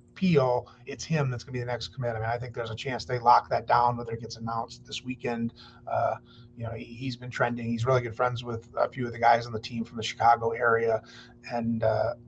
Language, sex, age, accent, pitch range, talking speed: English, male, 30-49, American, 120-135 Hz, 255 wpm